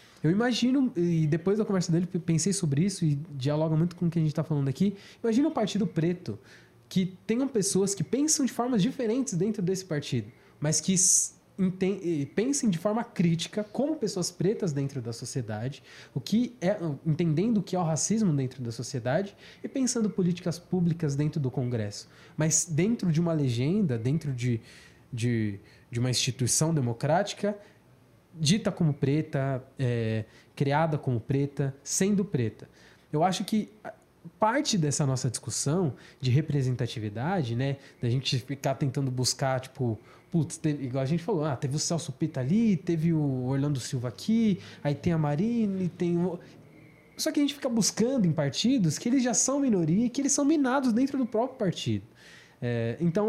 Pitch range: 135-205 Hz